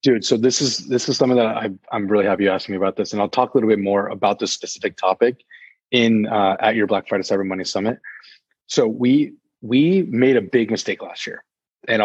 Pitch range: 100-130 Hz